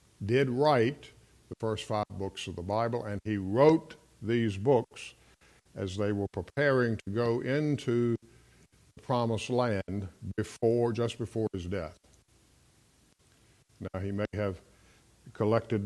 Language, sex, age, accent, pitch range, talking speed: English, male, 50-69, American, 95-115 Hz, 130 wpm